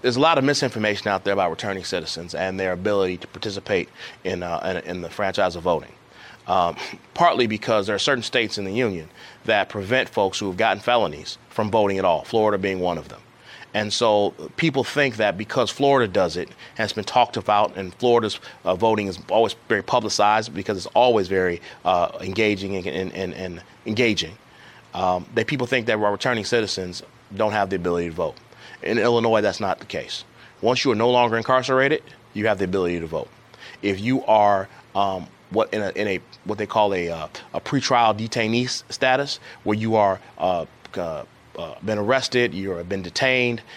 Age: 30-49